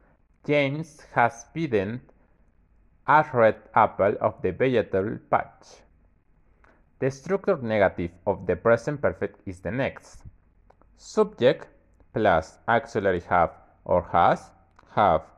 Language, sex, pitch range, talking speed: English, male, 85-115 Hz, 105 wpm